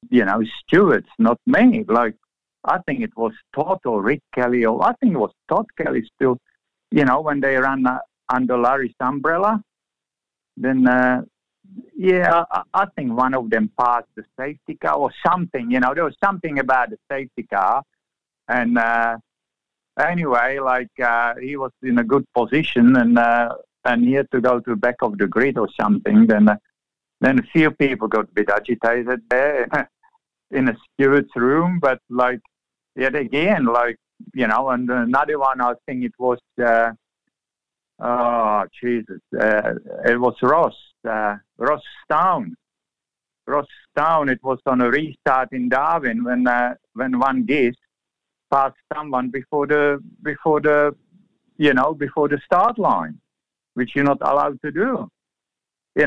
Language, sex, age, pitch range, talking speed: English, male, 50-69, 120-145 Hz, 165 wpm